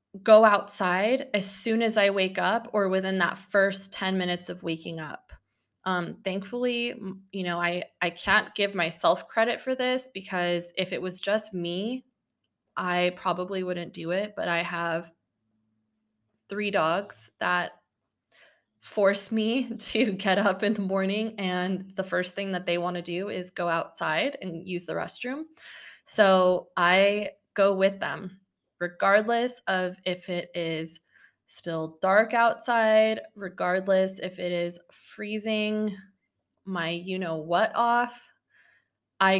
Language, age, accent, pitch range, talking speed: English, 20-39, American, 175-210 Hz, 140 wpm